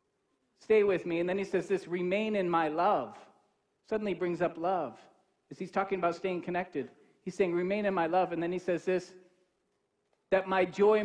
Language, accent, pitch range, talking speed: English, American, 160-205 Hz, 195 wpm